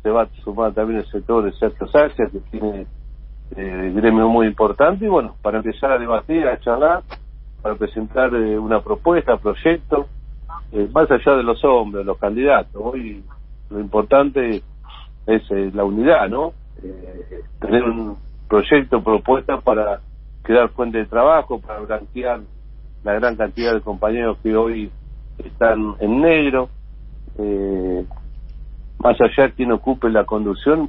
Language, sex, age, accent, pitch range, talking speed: Spanish, male, 50-69, Argentinian, 100-120 Hz, 145 wpm